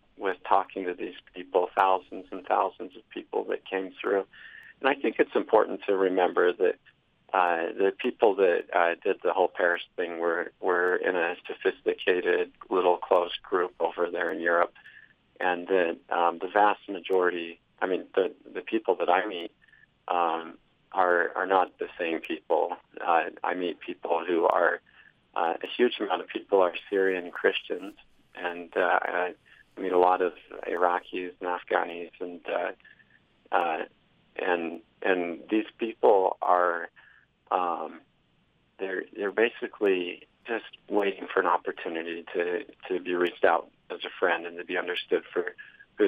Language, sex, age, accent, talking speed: English, male, 40-59, American, 160 wpm